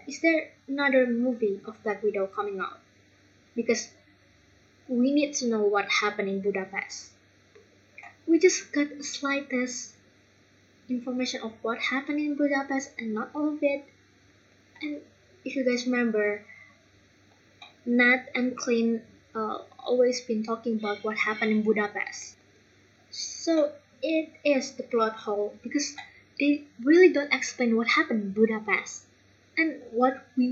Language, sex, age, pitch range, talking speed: English, female, 20-39, 205-265 Hz, 135 wpm